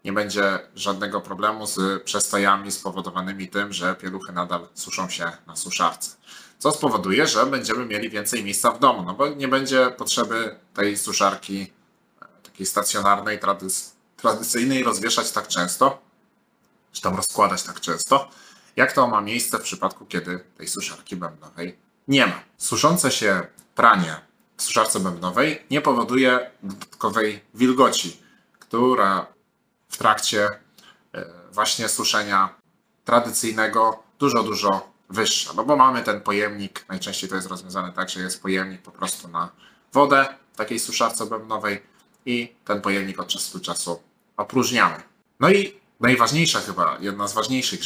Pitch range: 95-120 Hz